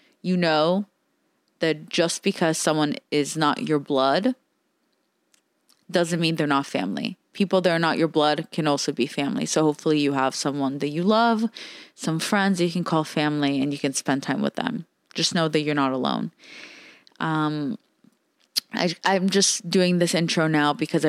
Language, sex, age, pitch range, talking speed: English, female, 20-39, 150-200 Hz, 175 wpm